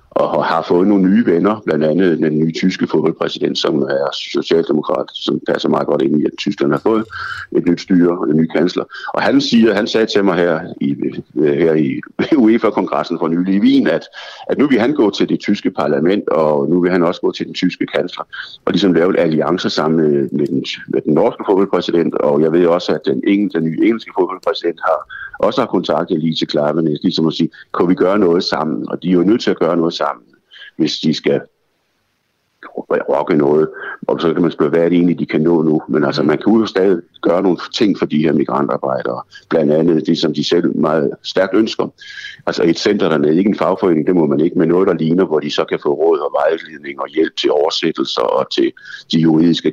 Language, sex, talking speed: Danish, male, 205 wpm